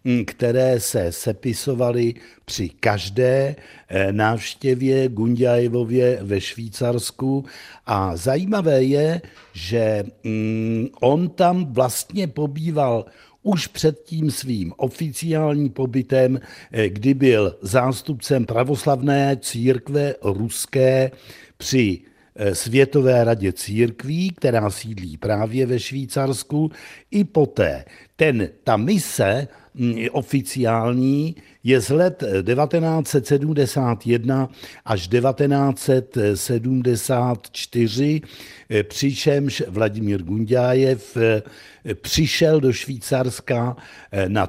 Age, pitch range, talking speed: 60-79, 115-140 Hz, 75 wpm